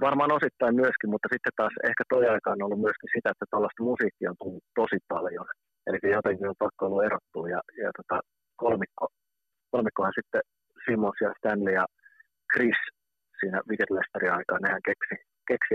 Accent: native